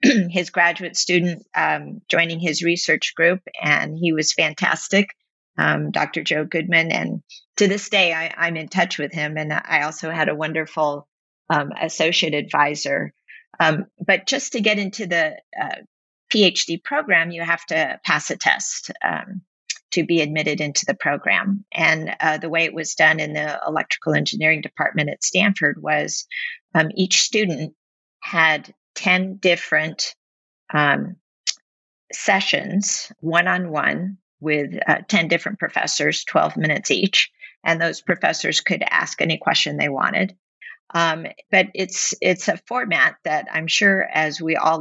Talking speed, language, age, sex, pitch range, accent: 150 wpm, English, 40-59, female, 160-200 Hz, American